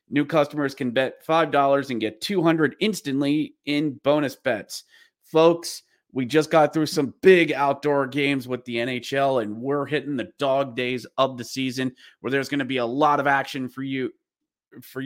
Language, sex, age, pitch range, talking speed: English, male, 30-49, 125-150 Hz, 180 wpm